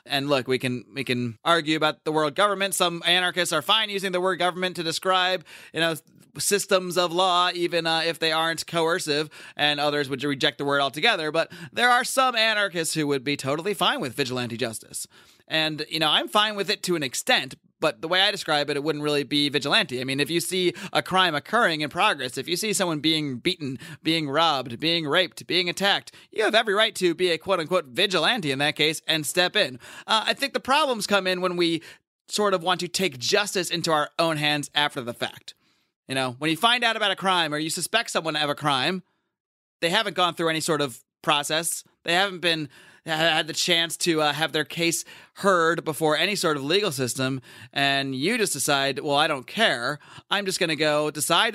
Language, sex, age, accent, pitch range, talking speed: English, male, 30-49, American, 150-185 Hz, 220 wpm